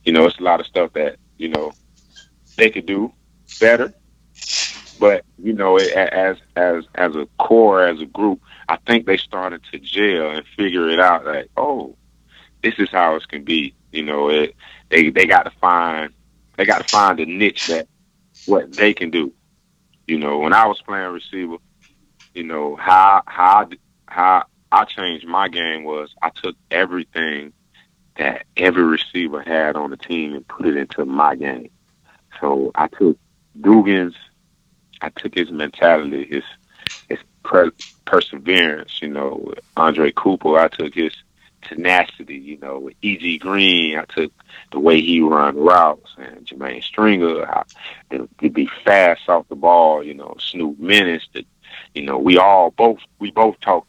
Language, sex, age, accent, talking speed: English, male, 30-49, American, 165 wpm